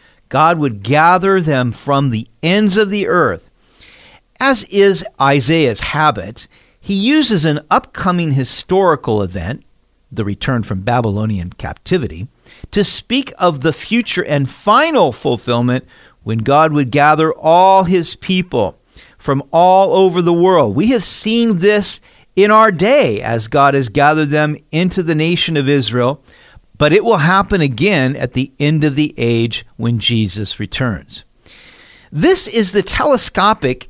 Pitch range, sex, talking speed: 125-190 Hz, male, 140 wpm